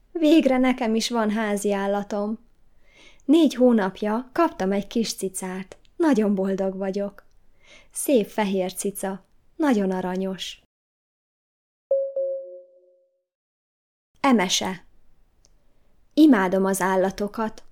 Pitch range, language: 195-260 Hz, Hungarian